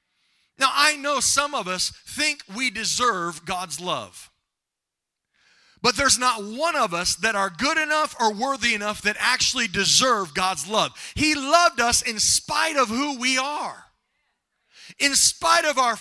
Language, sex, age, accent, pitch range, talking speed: English, male, 30-49, American, 200-285 Hz, 155 wpm